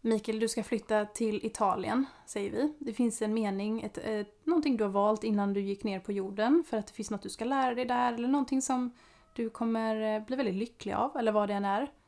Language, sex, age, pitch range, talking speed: Swedish, female, 30-49, 205-245 Hz, 240 wpm